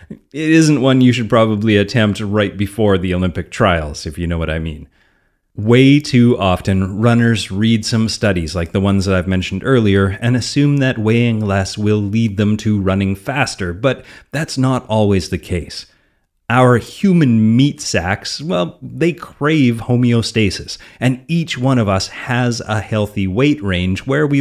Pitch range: 95-125 Hz